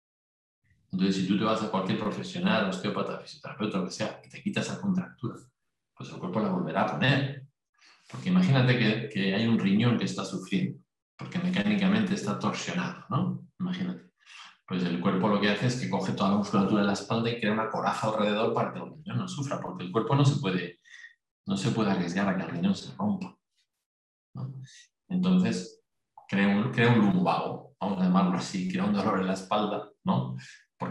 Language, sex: Spanish, male